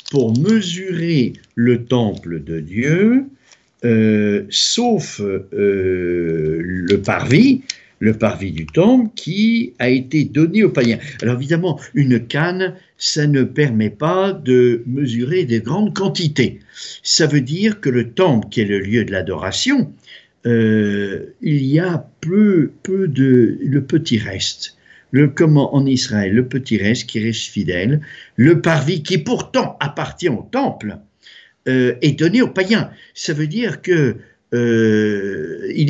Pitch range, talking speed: 110-180 Hz, 135 wpm